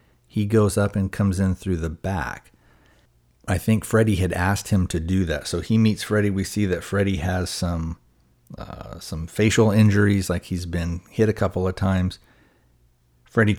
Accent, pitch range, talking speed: American, 80-100 Hz, 180 wpm